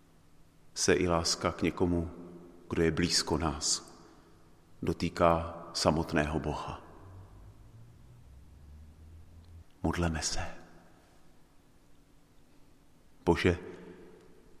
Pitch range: 80-90 Hz